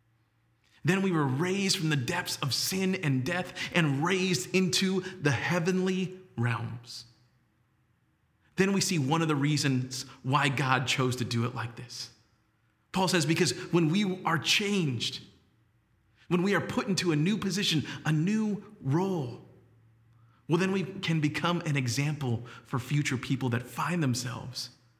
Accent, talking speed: American, 150 wpm